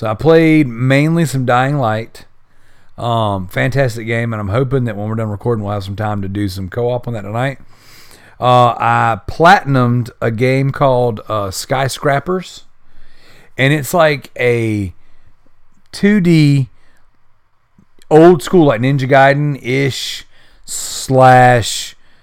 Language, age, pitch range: English, 40-59, 110-140 Hz